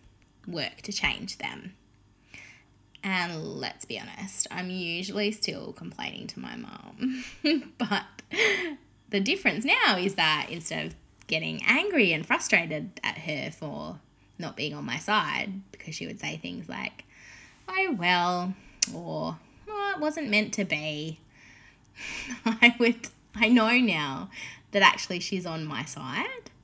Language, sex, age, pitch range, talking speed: English, female, 10-29, 180-265 Hz, 135 wpm